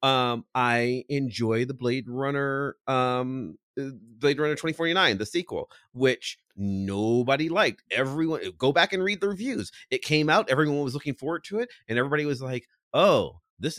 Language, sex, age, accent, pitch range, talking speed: English, male, 30-49, American, 135-220 Hz, 160 wpm